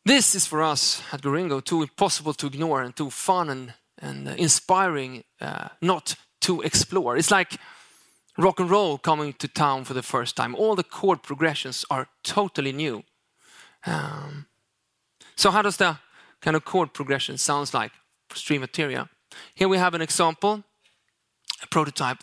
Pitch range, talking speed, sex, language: 140-175 Hz, 160 wpm, male, English